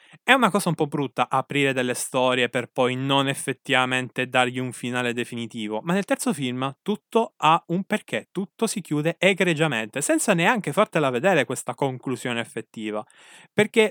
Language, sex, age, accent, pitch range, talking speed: Italian, male, 20-39, native, 130-195 Hz, 160 wpm